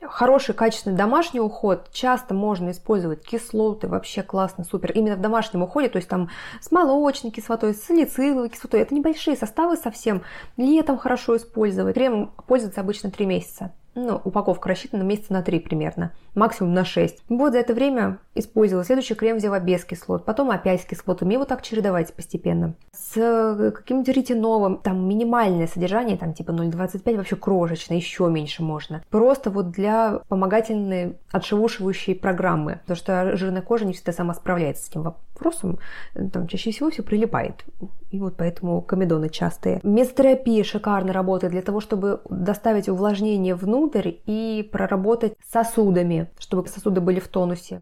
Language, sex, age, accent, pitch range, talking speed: Russian, female, 20-39, native, 185-230 Hz, 155 wpm